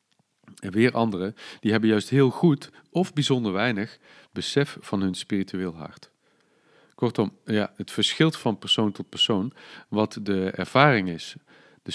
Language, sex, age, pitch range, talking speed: Dutch, male, 40-59, 95-135 Hz, 145 wpm